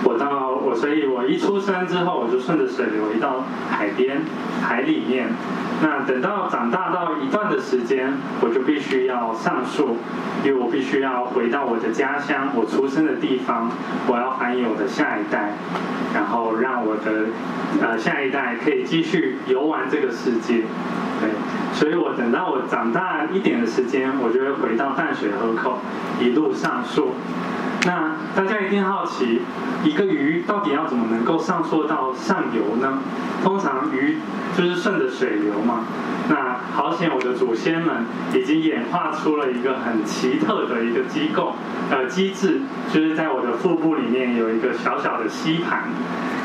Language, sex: Chinese, male